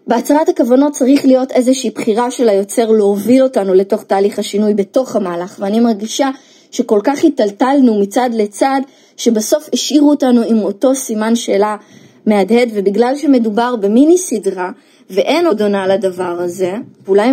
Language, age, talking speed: Hebrew, 20-39, 140 wpm